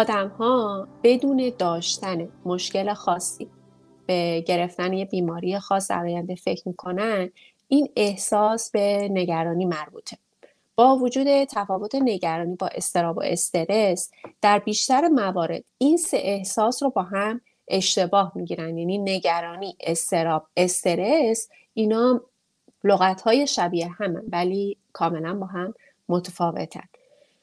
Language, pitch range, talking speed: English, 180-230 Hz, 115 wpm